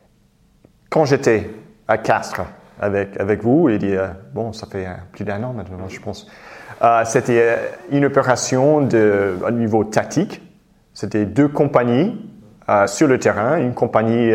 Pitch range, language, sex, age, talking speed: 110-150 Hz, French, male, 30-49, 145 wpm